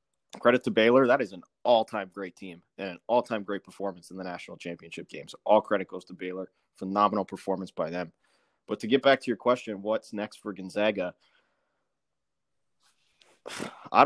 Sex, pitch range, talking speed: male, 95-115 Hz, 175 wpm